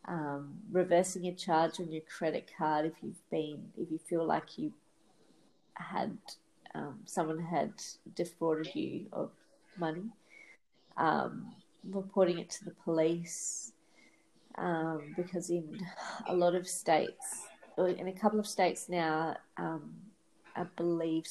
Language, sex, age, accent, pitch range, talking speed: English, female, 30-49, Australian, 160-180 Hz, 130 wpm